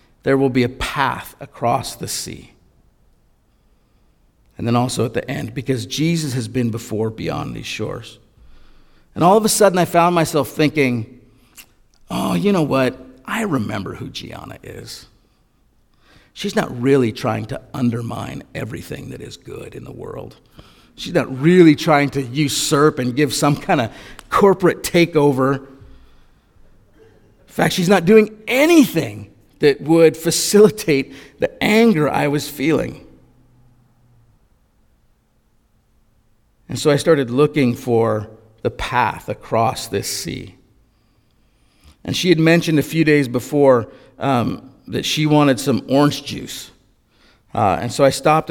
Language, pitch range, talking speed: English, 120-150 Hz, 135 wpm